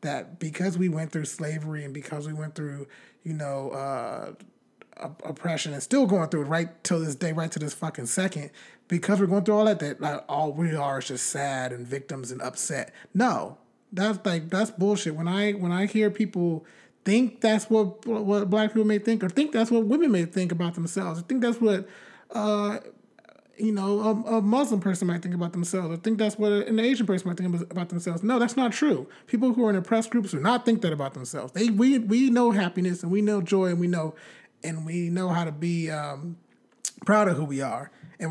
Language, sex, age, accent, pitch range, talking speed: English, male, 30-49, American, 160-215 Hz, 220 wpm